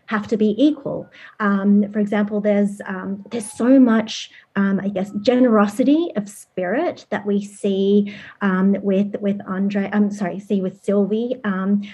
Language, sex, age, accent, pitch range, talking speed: English, female, 30-49, Australian, 190-220 Hz, 160 wpm